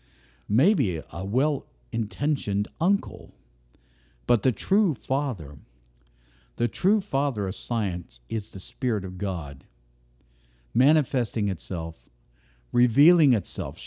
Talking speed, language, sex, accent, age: 95 wpm, English, male, American, 50-69